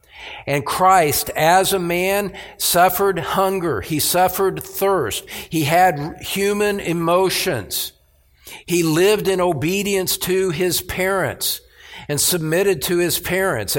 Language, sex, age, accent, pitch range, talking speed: English, male, 50-69, American, 130-190 Hz, 115 wpm